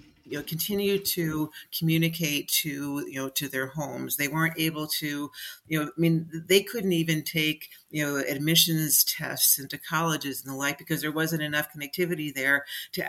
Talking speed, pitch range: 180 wpm, 135-160 Hz